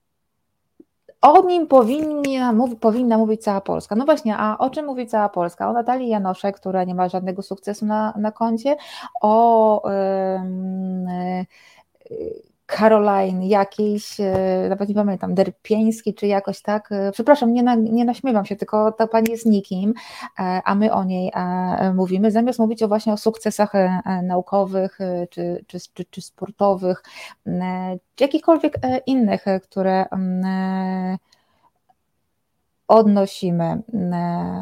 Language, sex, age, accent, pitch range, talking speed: Polish, female, 20-39, native, 185-220 Hz, 120 wpm